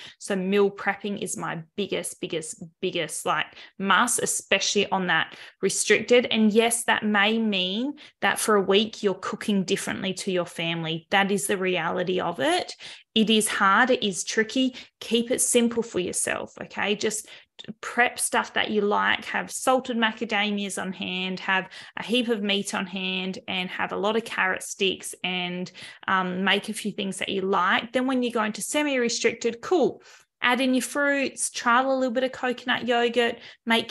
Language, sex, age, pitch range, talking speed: English, female, 20-39, 195-240 Hz, 175 wpm